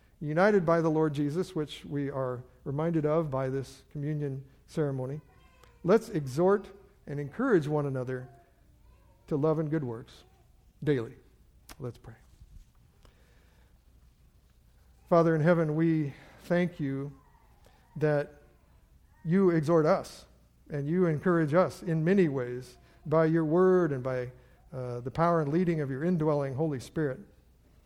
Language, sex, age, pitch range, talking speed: English, male, 50-69, 135-170 Hz, 130 wpm